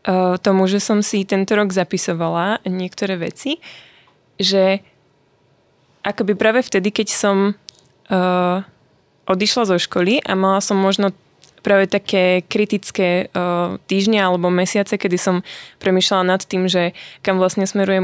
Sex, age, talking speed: female, 20-39, 130 wpm